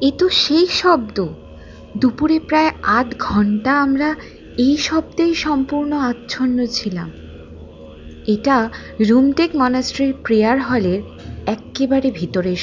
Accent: native